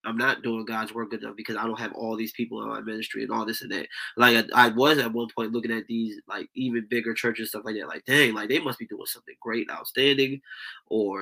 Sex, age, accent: male, 20-39, American